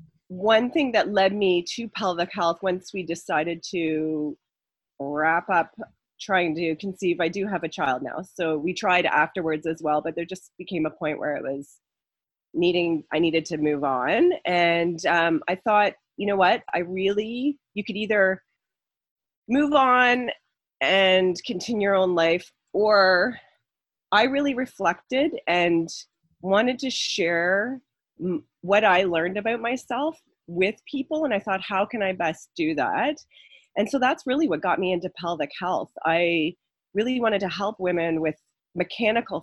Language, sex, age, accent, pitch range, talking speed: English, female, 30-49, American, 165-220 Hz, 160 wpm